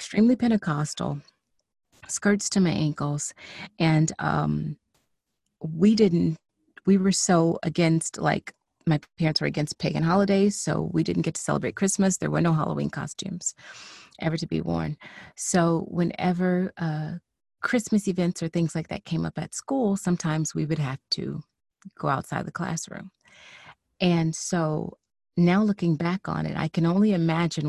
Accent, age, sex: American, 30-49, female